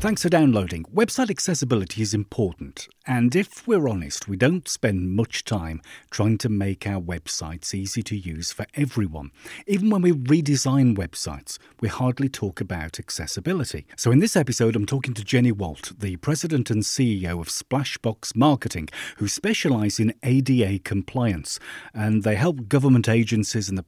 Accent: British